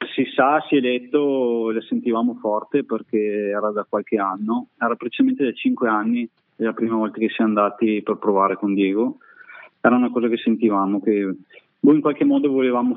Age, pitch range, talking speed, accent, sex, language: 30-49, 105-130 Hz, 175 wpm, native, male, Italian